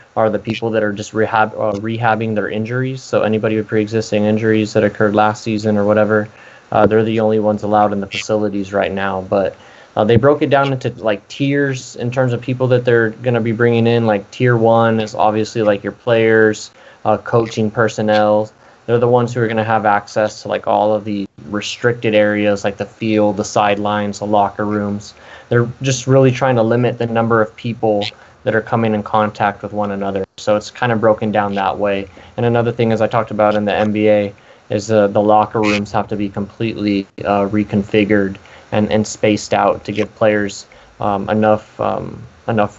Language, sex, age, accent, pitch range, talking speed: English, male, 20-39, American, 105-115 Hz, 205 wpm